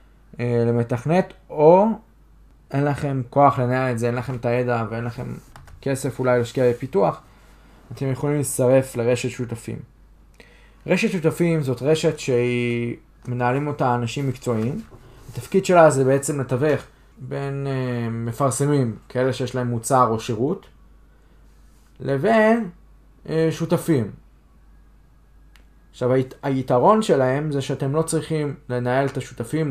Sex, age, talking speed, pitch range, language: male, 20-39, 115 wpm, 120-145 Hz, Hebrew